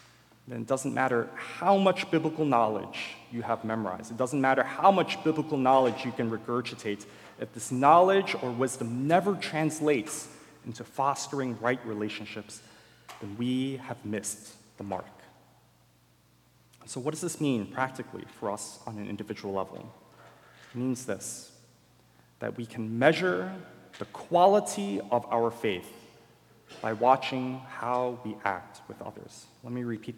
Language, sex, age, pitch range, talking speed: English, male, 30-49, 105-130 Hz, 145 wpm